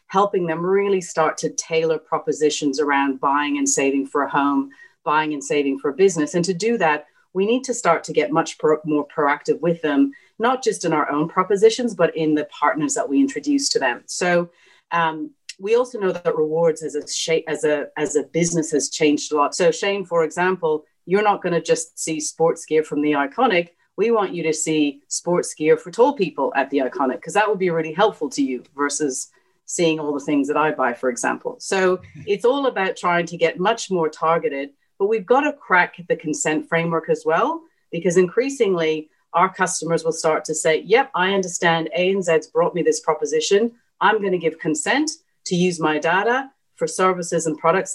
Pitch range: 155-200 Hz